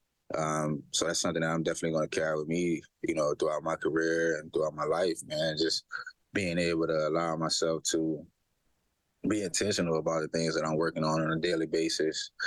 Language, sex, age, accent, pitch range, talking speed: English, male, 20-39, American, 80-85 Hz, 200 wpm